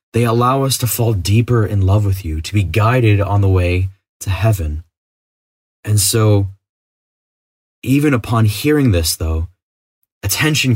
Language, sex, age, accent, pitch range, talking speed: English, male, 20-39, American, 90-110 Hz, 145 wpm